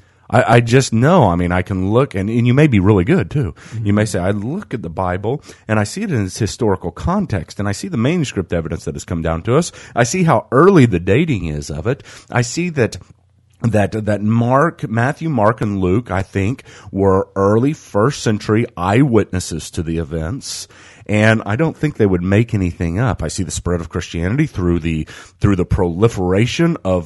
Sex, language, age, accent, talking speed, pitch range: male, English, 40-59, American, 210 wpm, 90-120 Hz